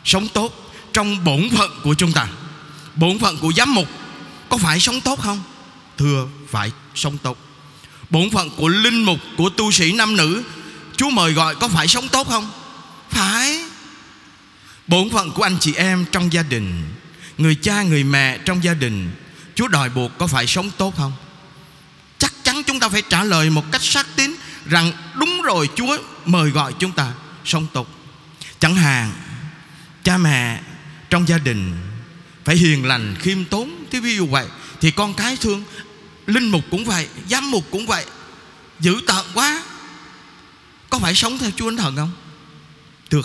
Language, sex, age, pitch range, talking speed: Vietnamese, male, 20-39, 145-195 Hz, 175 wpm